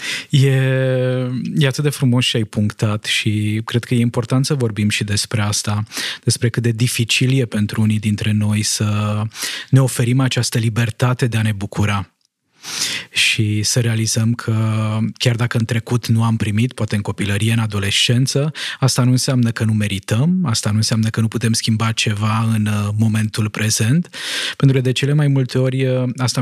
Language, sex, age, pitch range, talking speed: Romanian, male, 20-39, 110-130 Hz, 175 wpm